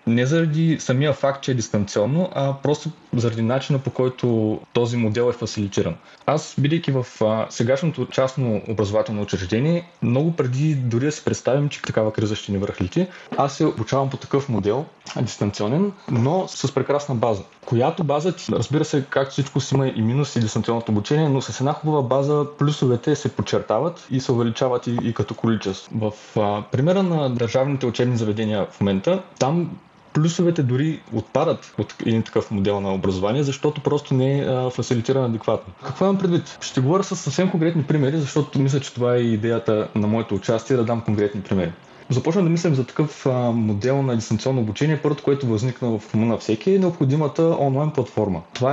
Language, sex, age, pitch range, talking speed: Bulgarian, male, 20-39, 110-150 Hz, 170 wpm